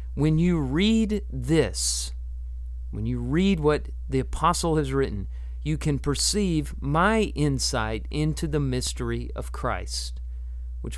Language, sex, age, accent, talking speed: English, male, 40-59, American, 125 wpm